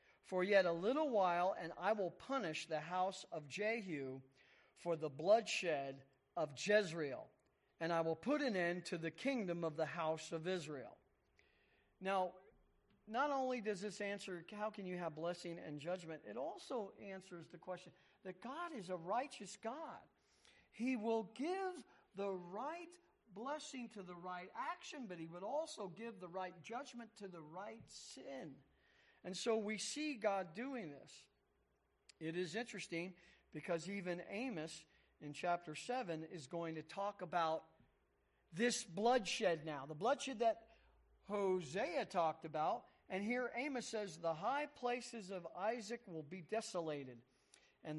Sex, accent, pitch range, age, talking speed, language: male, American, 165-225 Hz, 50-69, 150 wpm, English